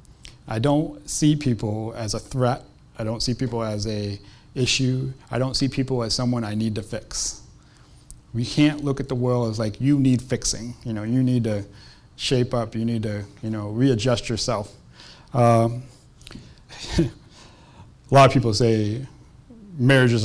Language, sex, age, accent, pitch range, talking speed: English, male, 30-49, American, 110-130 Hz, 165 wpm